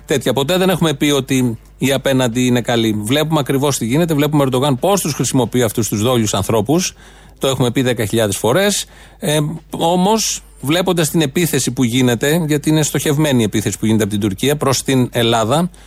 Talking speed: 180 wpm